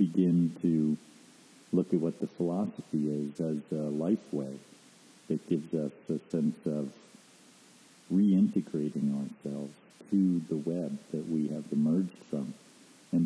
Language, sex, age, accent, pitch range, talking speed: English, male, 50-69, American, 75-100 Hz, 130 wpm